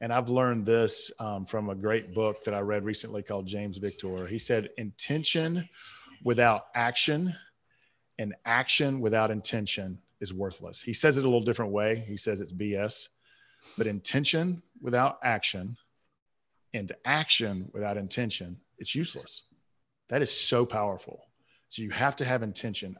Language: English